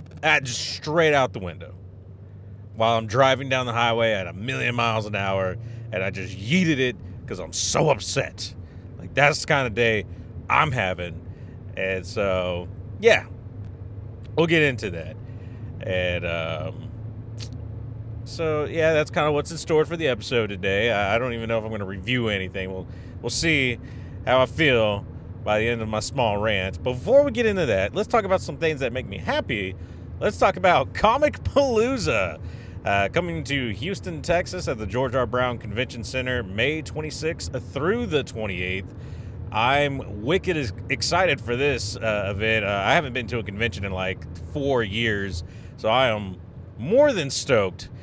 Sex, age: male, 30-49